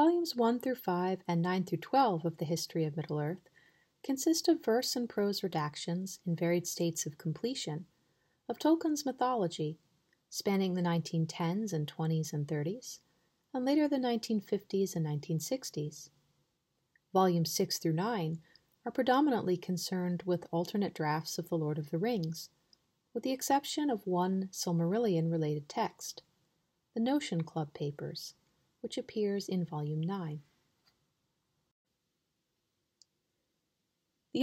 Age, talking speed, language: 30-49, 125 wpm, English